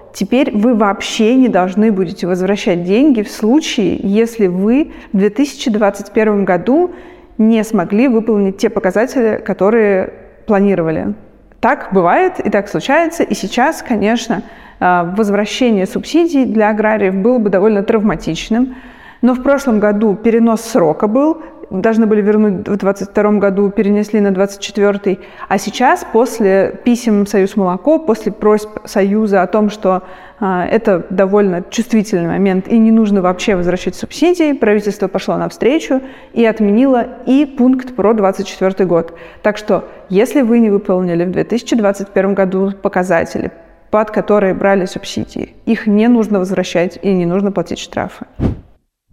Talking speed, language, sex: 135 wpm, Russian, female